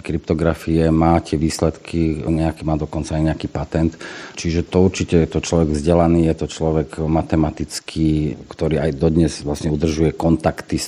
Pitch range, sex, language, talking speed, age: 80-85 Hz, male, Slovak, 150 wpm, 40-59